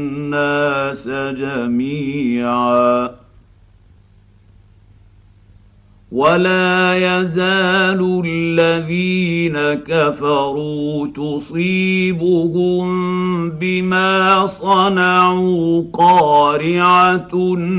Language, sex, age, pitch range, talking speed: Arabic, male, 50-69, 135-180 Hz, 35 wpm